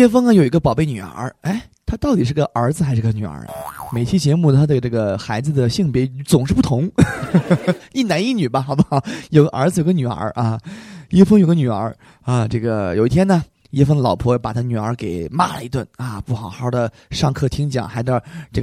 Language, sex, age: Chinese, male, 20-39